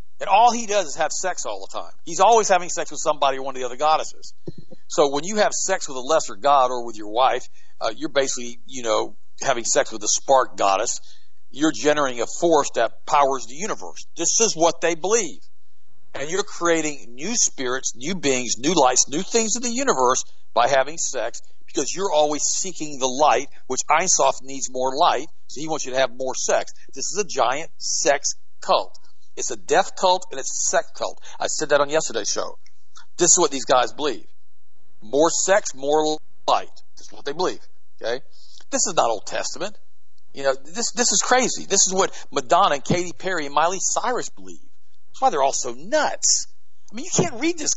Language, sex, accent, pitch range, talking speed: English, male, American, 135-220 Hz, 210 wpm